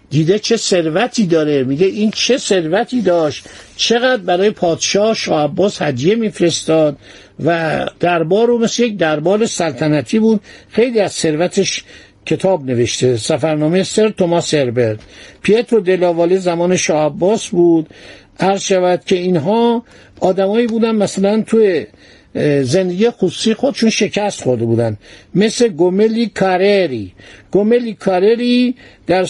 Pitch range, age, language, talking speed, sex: 160-215 Hz, 60-79, Persian, 120 wpm, male